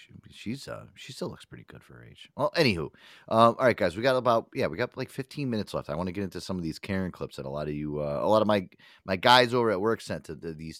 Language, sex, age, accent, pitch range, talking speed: English, male, 30-49, American, 85-125 Hz, 310 wpm